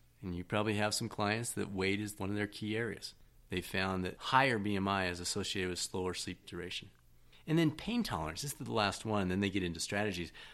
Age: 40-59